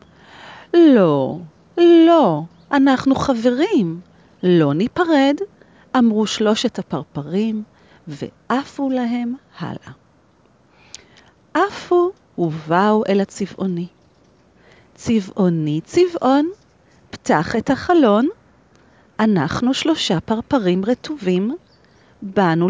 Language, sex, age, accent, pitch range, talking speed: Hebrew, female, 40-59, native, 180-280 Hz, 70 wpm